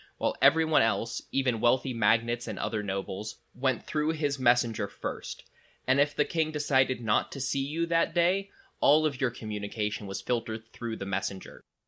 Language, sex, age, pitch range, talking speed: English, male, 20-39, 110-140 Hz, 170 wpm